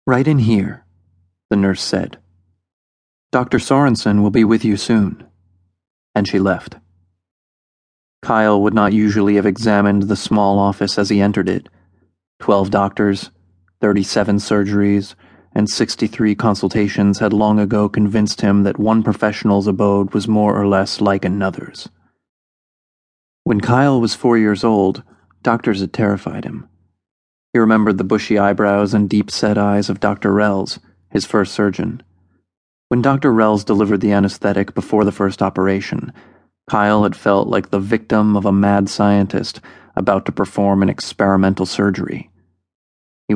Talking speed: 140 wpm